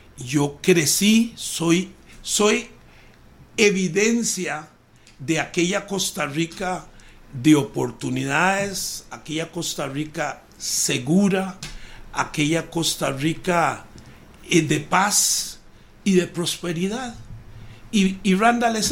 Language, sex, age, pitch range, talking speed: Spanish, male, 60-79, 150-205 Hz, 85 wpm